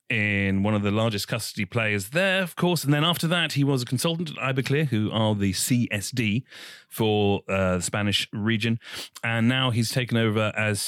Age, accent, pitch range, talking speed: 30-49, British, 100-130 Hz, 195 wpm